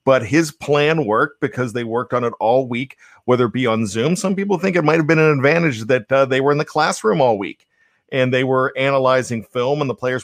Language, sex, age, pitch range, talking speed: English, male, 50-69, 125-160 Hz, 245 wpm